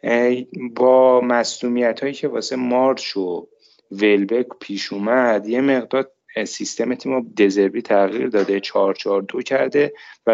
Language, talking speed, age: Persian, 130 wpm, 30-49